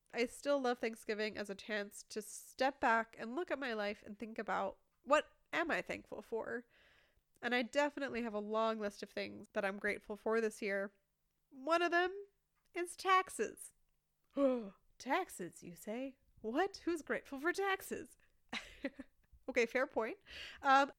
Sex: female